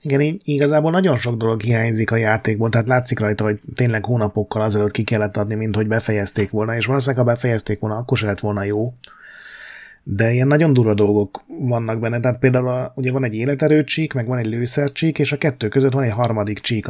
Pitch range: 105-130 Hz